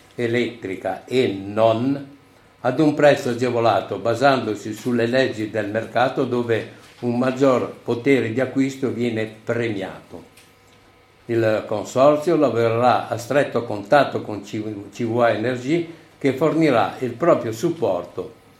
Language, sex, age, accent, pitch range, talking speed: Italian, male, 60-79, native, 105-135 Hz, 110 wpm